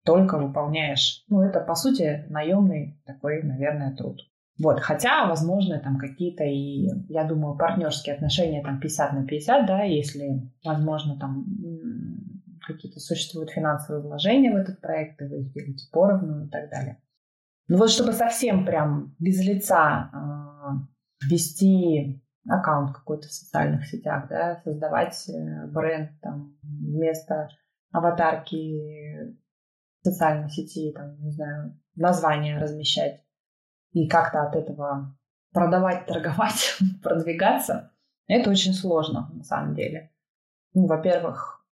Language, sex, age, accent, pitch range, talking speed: Russian, female, 20-39, native, 145-180 Hz, 120 wpm